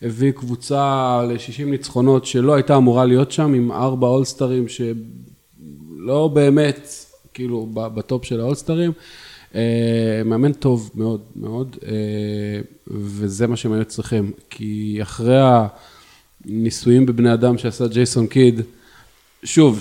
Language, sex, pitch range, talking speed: Hebrew, male, 105-125 Hz, 110 wpm